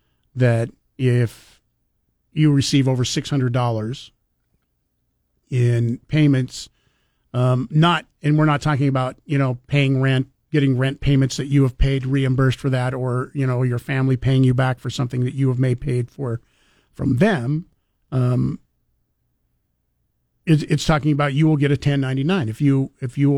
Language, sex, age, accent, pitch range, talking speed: English, male, 50-69, American, 125-145 Hz, 165 wpm